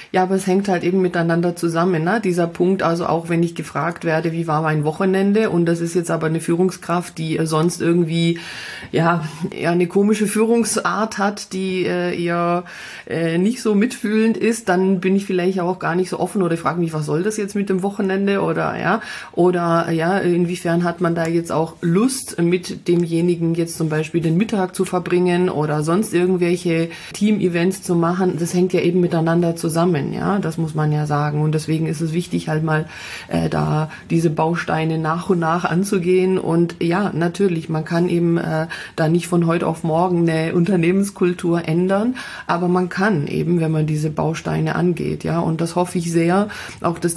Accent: German